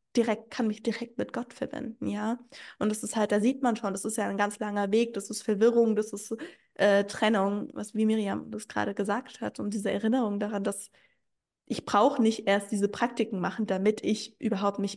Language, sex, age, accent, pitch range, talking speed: German, female, 10-29, German, 205-230 Hz, 215 wpm